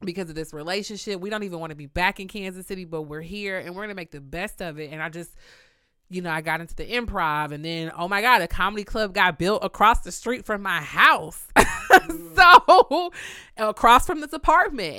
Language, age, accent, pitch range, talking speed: English, 30-49, American, 160-250 Hz, 225 wpm